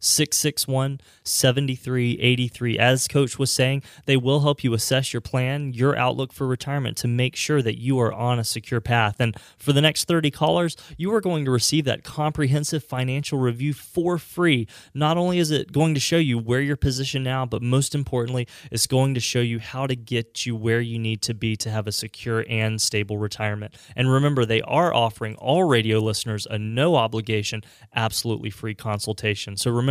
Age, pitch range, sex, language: 20-39, 115-140 Hz, male, English